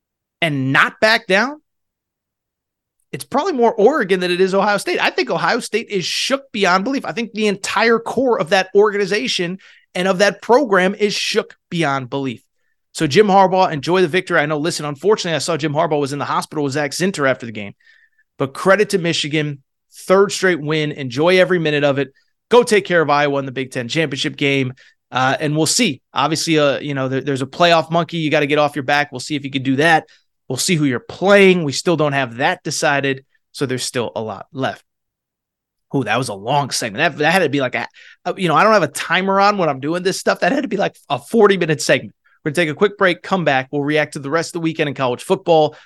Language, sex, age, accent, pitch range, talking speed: English, male, 30-49, American, 145-195 Hz, 240 wpm